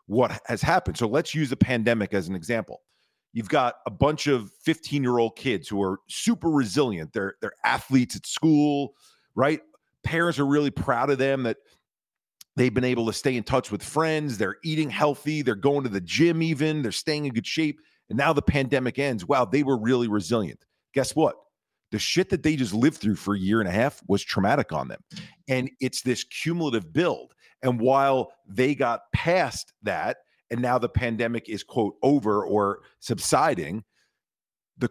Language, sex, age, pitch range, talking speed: English, male, 40-59, 115-145 Hz, 185 wpm